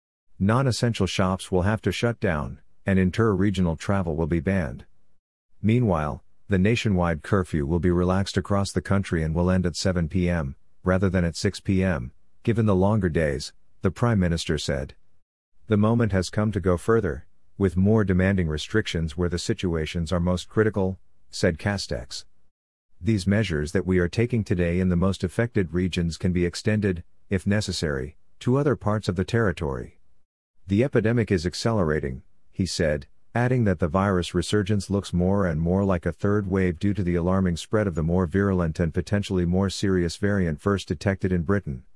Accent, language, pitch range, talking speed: American, English, 85-100 Hz, 170 wpm